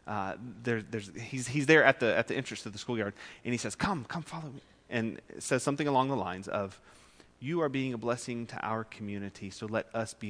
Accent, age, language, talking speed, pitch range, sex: American, 30-49, English, 235 wpm, 95-120 Hz, male